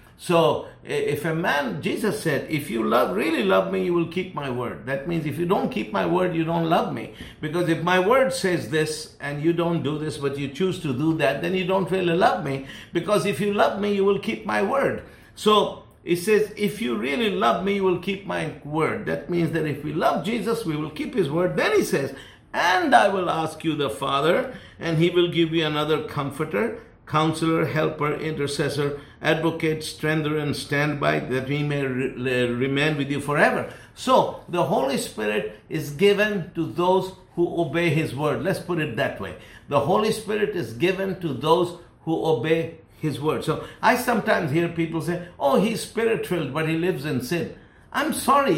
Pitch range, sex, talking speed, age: 155-210 Hz, male, 205 wpm, 50-69